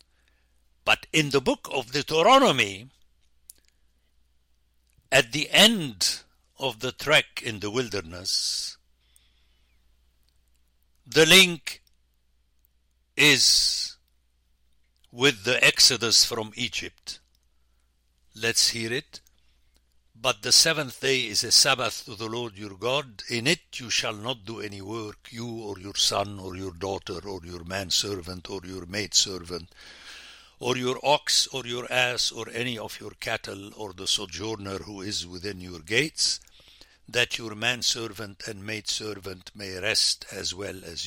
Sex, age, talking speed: male, 60-79, 135 wpm